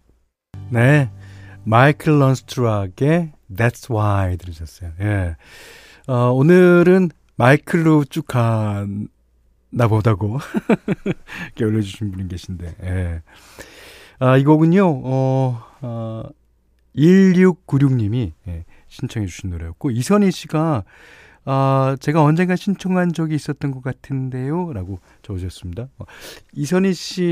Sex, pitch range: male, 95-150 Hz